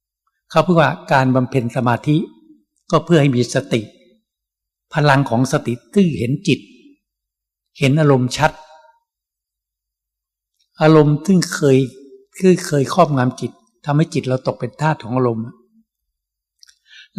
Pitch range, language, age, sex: 125-170 Hz, Thai, 60-79, male